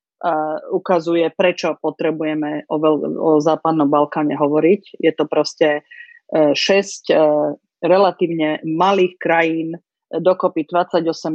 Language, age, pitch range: Slovak, 30-49, 155-190 Hz